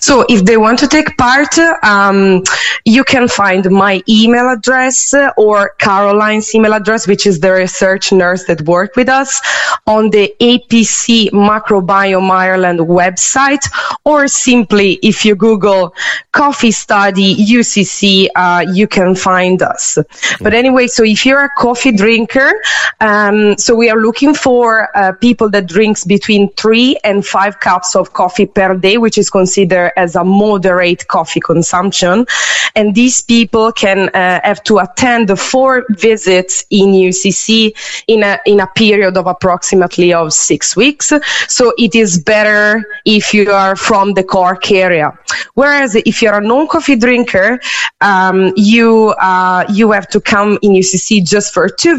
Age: 20-39